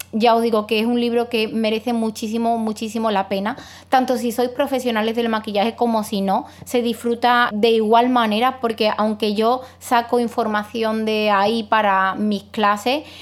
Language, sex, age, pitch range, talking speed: Spanish, female, 20-39, 210-235 Hz, 170 wpm